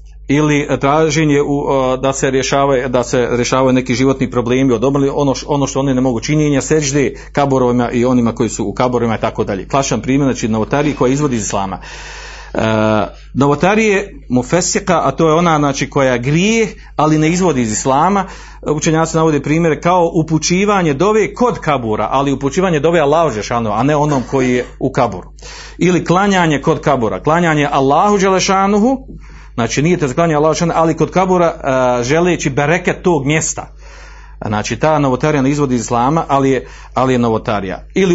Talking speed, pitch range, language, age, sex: 165 wpm, 125-160 Hz, Croatian, 40-59, male